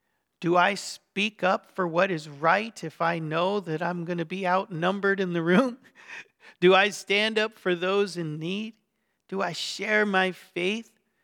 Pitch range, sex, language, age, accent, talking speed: 165-205 Hz, male, English, 40-59, American, 175 wpm